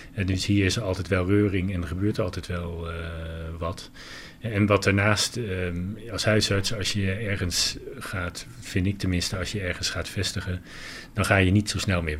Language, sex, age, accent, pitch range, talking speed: Dutch, male, 40-59, Dutch, 85-100 Hz, 185 wpm